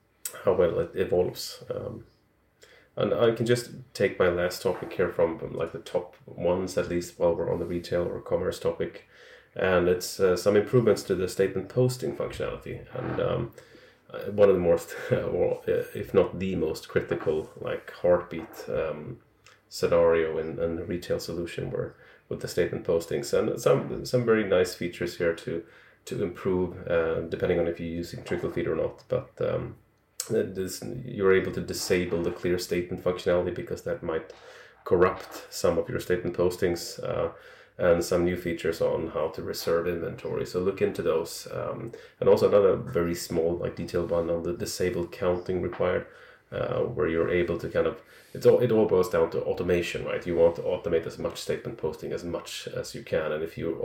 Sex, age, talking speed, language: male, 30-49, 180 wpm, English